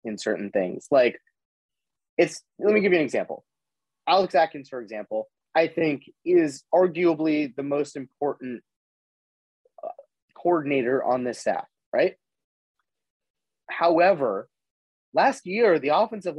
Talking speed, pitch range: 120 wpm, 135-175 Hz